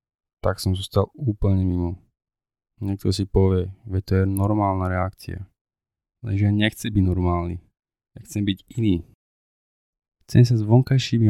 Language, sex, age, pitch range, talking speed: Slovak, male, 20-39, 95-105 Hz, 140 wpm